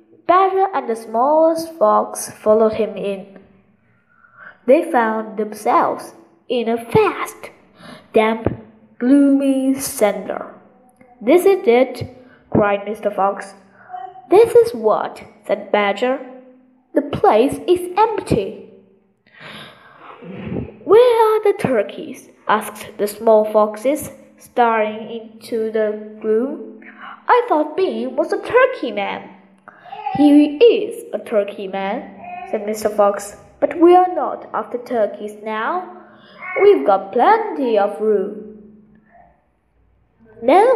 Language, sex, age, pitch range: Chinese, female, 10-29, 215-345 Hz